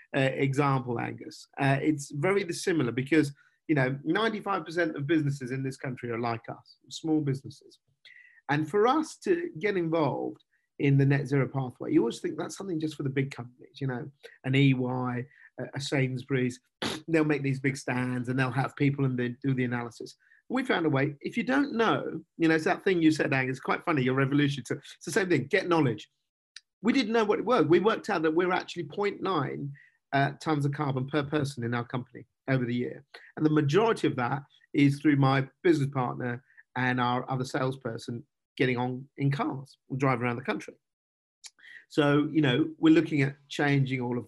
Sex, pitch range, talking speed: male, 130-160 Hz, 200 wpm